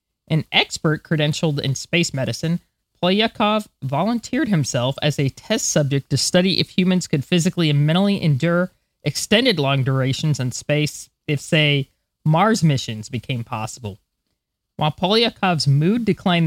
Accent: American